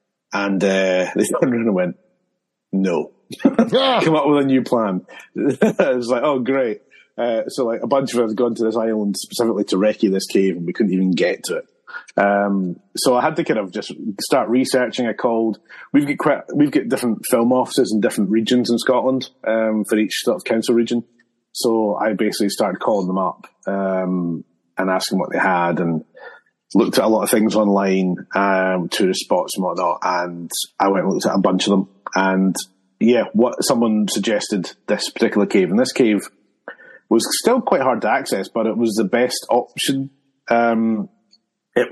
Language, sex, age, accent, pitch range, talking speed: English, male, 30-49, British, 100-130 Hz, 195 wpm